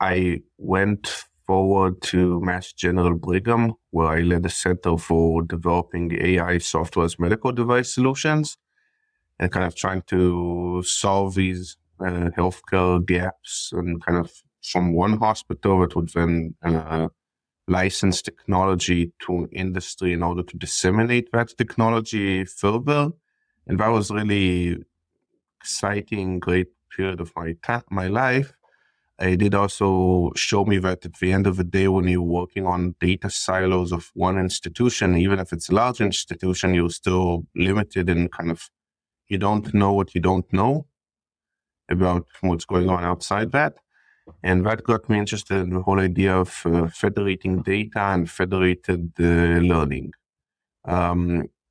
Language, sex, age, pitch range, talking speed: English, male, 30-49, 85-100 Hz, 145 wpm